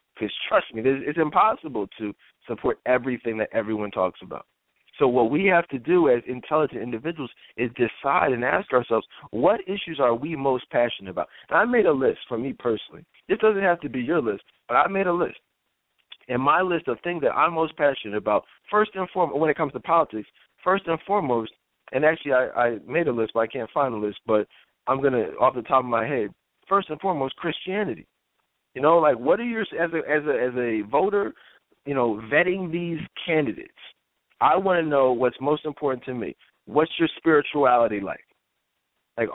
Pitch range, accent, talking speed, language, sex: 120-170 Hz, American, 205 wpm, English, male